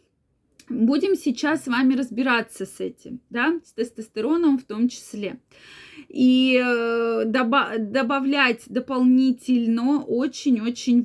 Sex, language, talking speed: female, Russian, 90 wpm